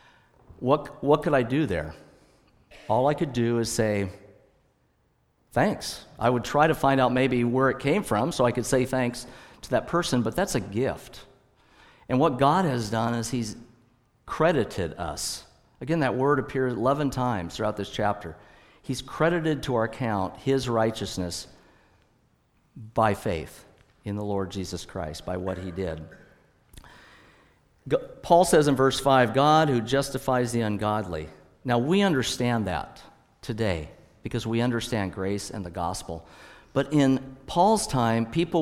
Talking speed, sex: 155 wpm, male